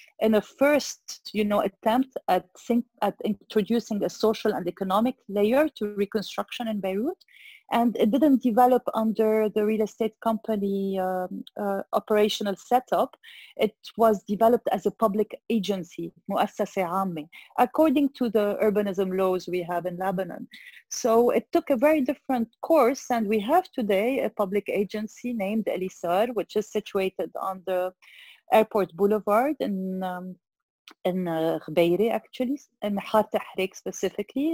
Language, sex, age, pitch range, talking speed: English, female, 30-49, 195-240 Hz, 135 wpm